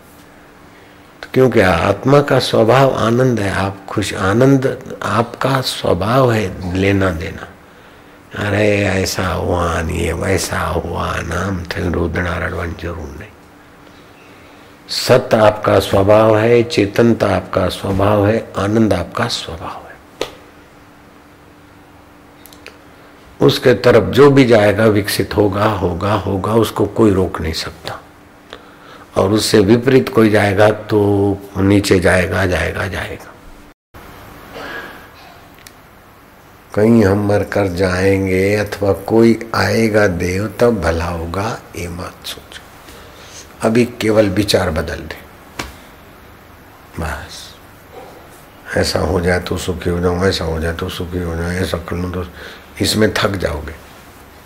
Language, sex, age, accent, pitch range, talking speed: Hindi, male, 60-79, native, 90-105 Hz, 115 wpm